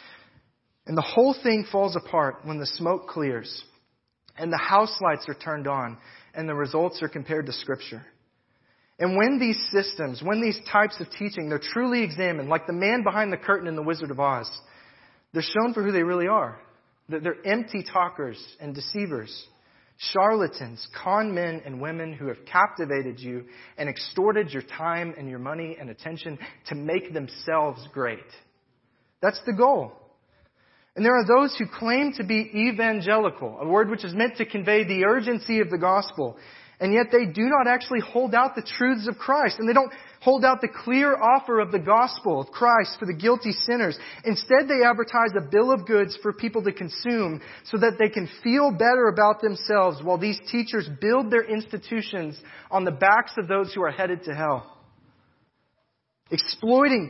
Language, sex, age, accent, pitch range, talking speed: English, male, 30-49, American, 155-230 Hz, 180 wpm